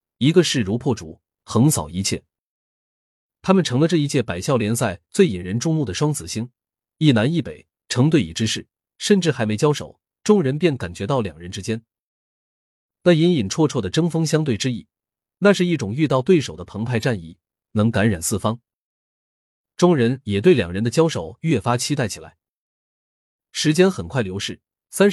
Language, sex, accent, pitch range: Chinese, male, native, 105-155 Hz